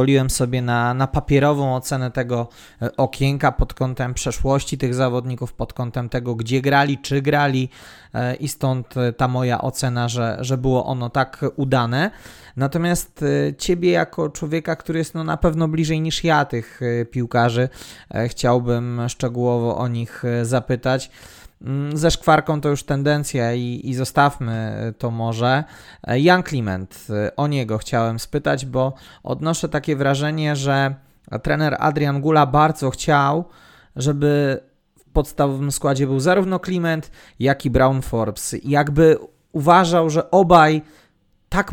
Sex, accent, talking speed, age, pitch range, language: male, native, 130 wpm, 20-39, 125-150 Hz, Polish